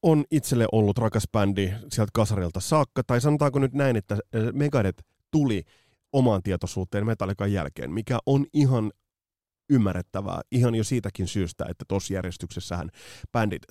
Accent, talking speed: native, 135 wpm